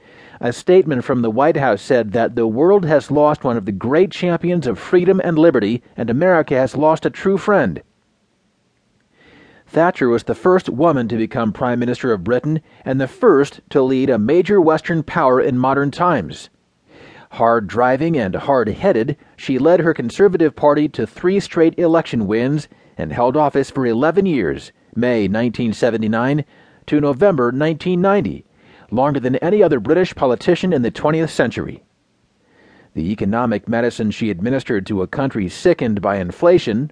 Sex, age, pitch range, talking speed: male, 40-59, 120-170 Hz, 155 wpm